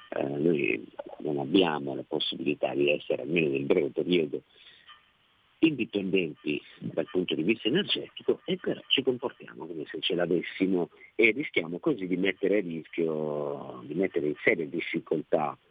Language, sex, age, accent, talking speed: Italian, male, 50-69, native, 145 wpm